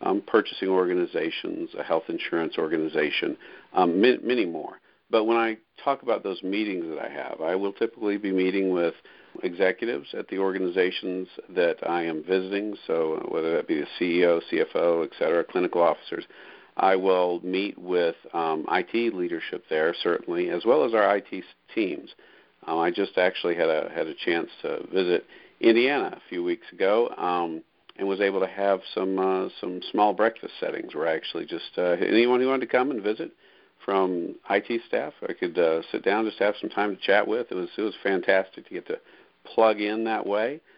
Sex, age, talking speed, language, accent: male, 50-69, 185 wpm, English, American